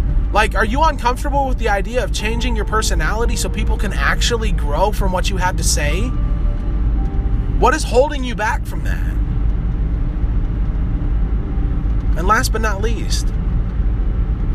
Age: 20-39